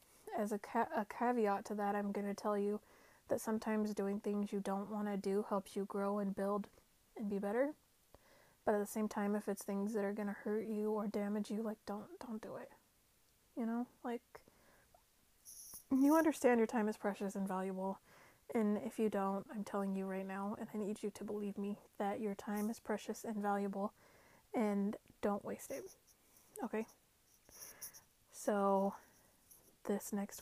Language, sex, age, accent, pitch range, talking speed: English, female, 30-49, American, 200-225 Hz, 185 wpm